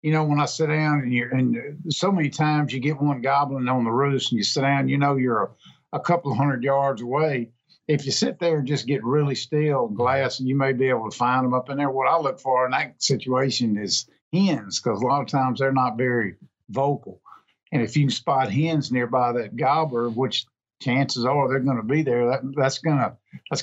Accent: American